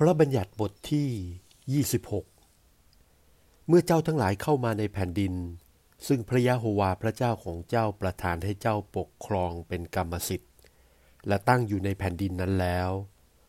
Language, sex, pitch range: Thai, male, 90-120 Hz